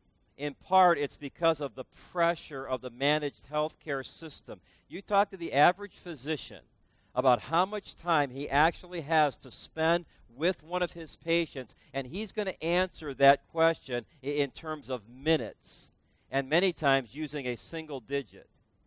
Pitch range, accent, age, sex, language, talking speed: 135-170 Hz, American, 40-59, male, English, 160 wpm